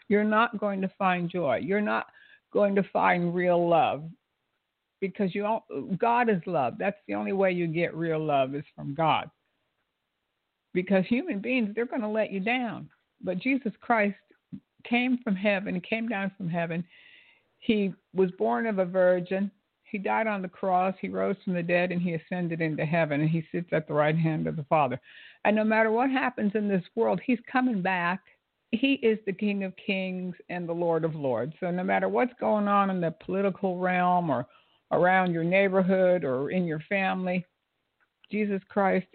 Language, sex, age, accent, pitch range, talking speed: English, female, 60-79, American, 170-210 Hz, 185 wpm